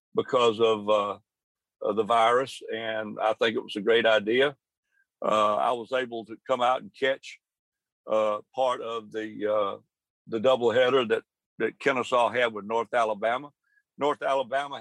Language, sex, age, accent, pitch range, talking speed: English, male, 60-79, American, 115-140 Hz, 155 wpm